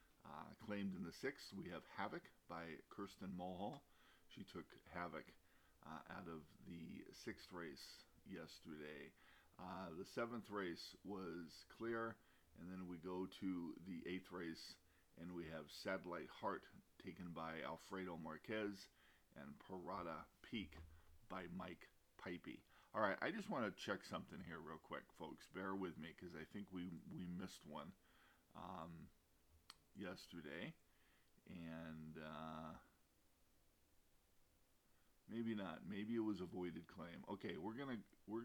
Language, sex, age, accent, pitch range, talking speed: English, male, 40-59, American, 80-100 Hz, 135 wpm